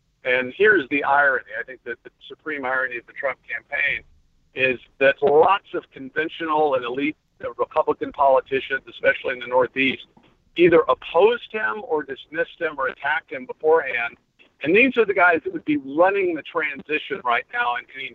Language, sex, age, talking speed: English, male, 50-69, 170 wpm